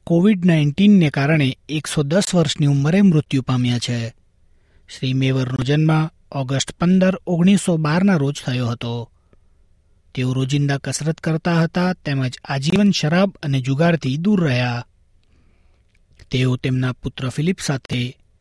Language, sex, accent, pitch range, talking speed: Gujarati, male, native, 130-160 Hz, 120 wpm